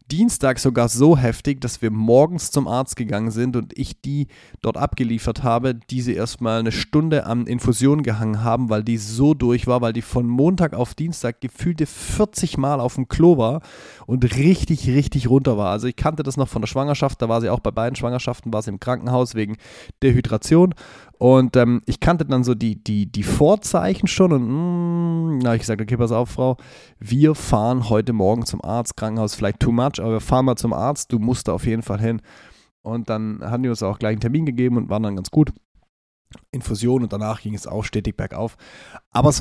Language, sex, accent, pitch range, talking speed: German, male, German, 115-140 Hz, 205 wpm